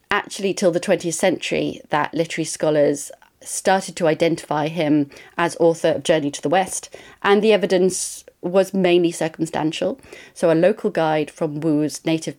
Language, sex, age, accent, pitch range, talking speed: English, female, 30-49, British, 155-195 Hz, 155 wpm